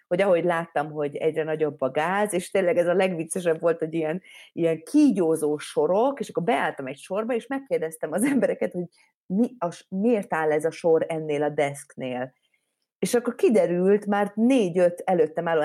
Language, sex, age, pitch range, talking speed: Hungarian, female, 30-49, 150-205 Hz, 170 wpm